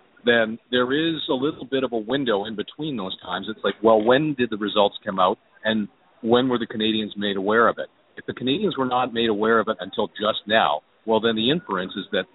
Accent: American